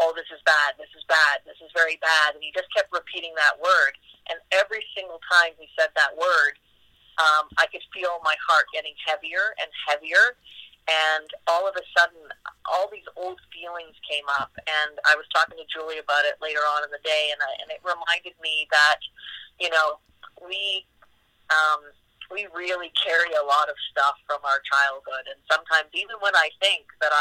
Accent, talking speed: American, 190 wpm